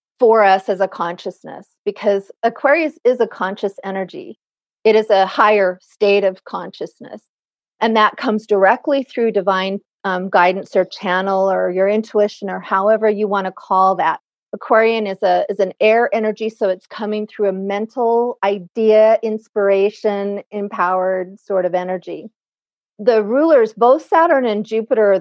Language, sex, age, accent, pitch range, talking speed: English, female, 40-59, American, 195-225 Hz, 150 wpm